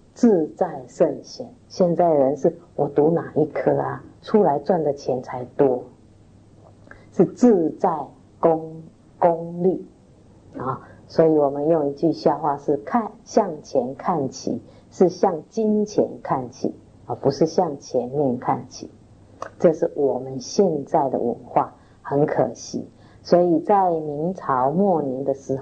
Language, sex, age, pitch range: Chinese, female, 50-69, 145-200 Hz